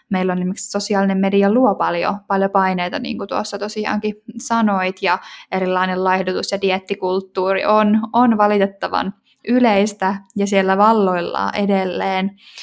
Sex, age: female, 10-29